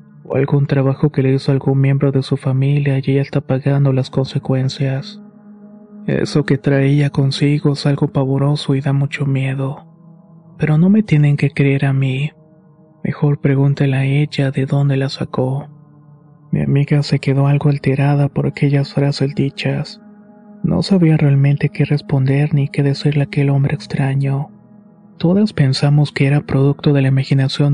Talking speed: 160 wpm